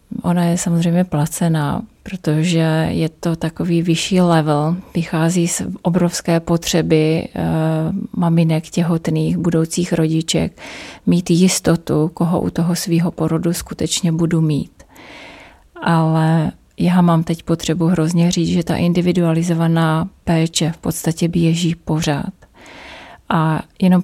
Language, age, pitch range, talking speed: Czech, 30-49, 160-175 Hz, 110 wpm